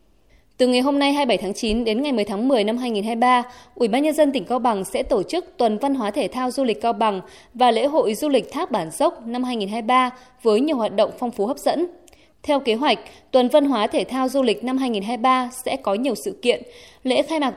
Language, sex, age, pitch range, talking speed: Vietnamese, female, 20-39, 220-285 Hz, 245 wpm